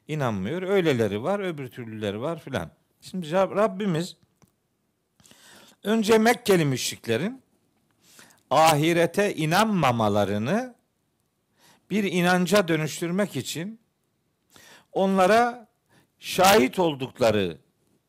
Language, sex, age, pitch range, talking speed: Turkish, male, 50-69, 135-195 Hz, 70 wpm